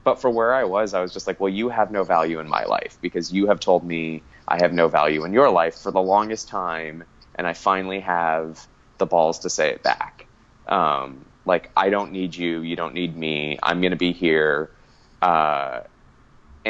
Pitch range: 80-110 Hz